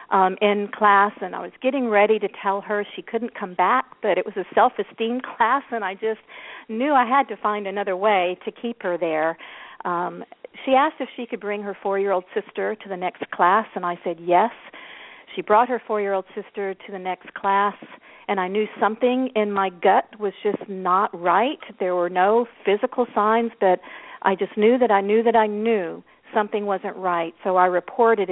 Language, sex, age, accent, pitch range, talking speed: English, female, 50-69, American, 190-225 Hz, 200 wpm